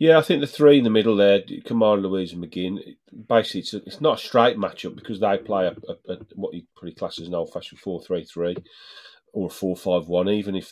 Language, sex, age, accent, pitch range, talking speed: English, male, 40-59, British, 90-105 Hz, 215 wpm